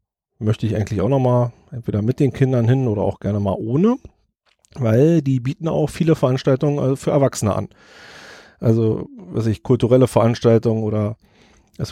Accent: German